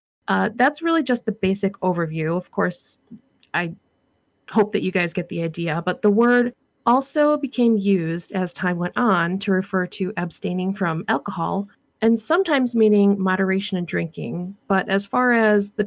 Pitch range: 185-235 Hz